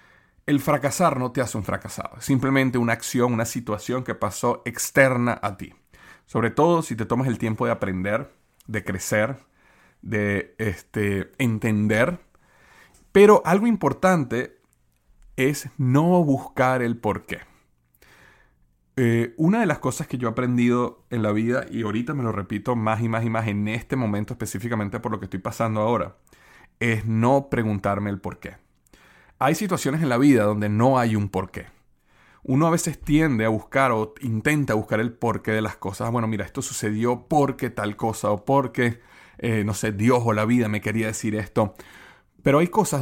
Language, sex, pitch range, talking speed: Spanish, male, 105-135 Hz, 175 wpm